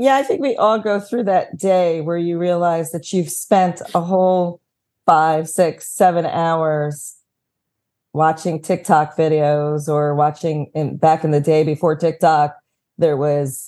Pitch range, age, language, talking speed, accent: 155-190 Hz, 40-59, English, 150 wpm, American